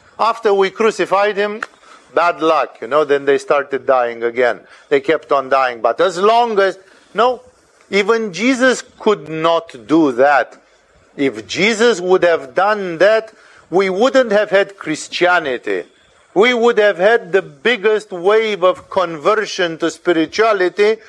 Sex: male